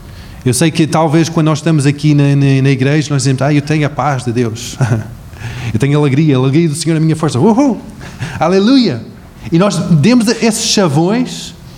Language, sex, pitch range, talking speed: Portuguese, male, 125-165 Hz, 195 wpm